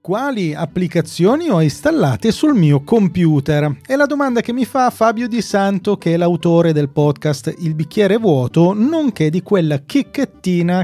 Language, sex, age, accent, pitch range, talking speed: Italian, male, 30-49, native, 155-215 Hz, 155 wpm